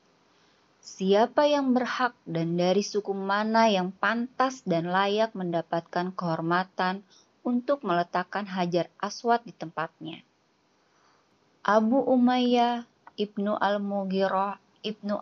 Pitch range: 185-230 Hz